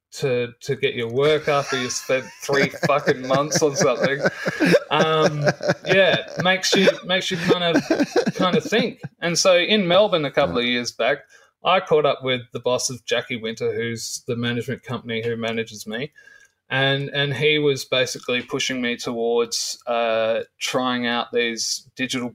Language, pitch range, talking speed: English, 120-160 Hz, 165 wpm